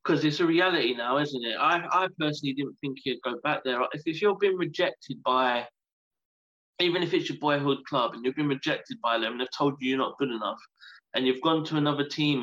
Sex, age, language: male, 20-39, English